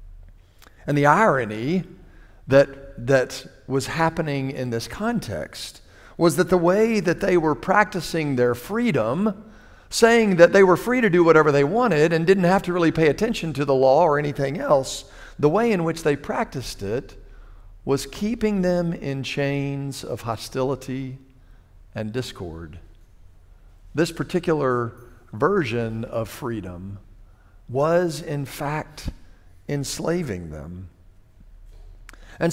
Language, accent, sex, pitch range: English, American, male, 110-170 Hz